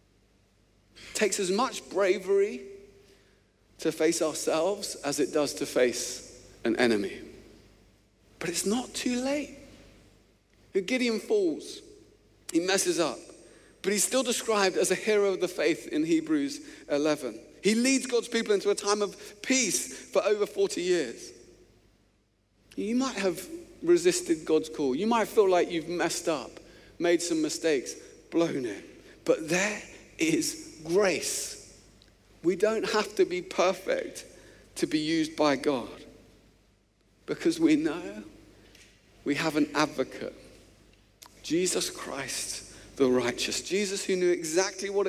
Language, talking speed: English, 130 wpm